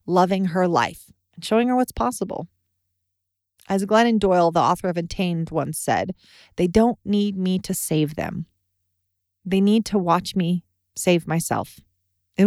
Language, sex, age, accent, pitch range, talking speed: English, female, 30-49, American, 160-215 Hz, 155 wpm